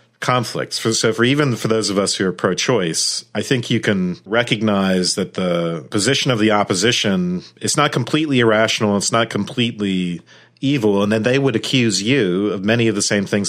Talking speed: 180 wpm